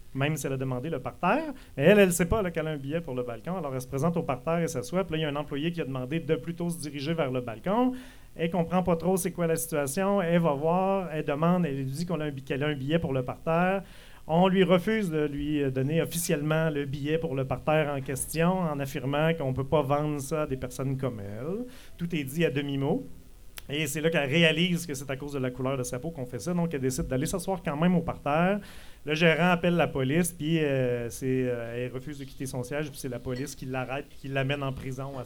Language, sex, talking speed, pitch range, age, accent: French, male, 260 wpm, 140-175 Hz, 40-59, Canadian